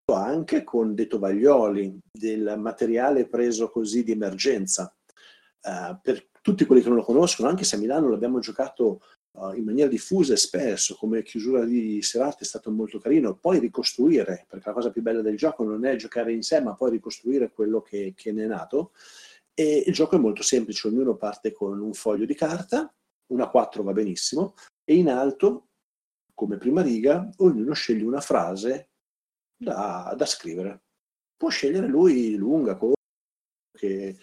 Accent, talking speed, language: native, 170 wpm, Italian